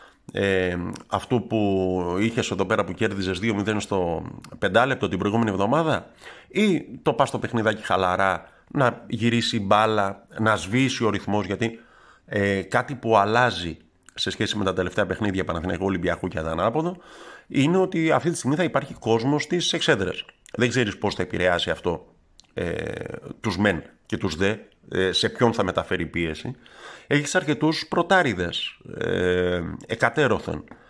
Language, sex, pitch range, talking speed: Greek, male, 90-120 Hz, 150 wpm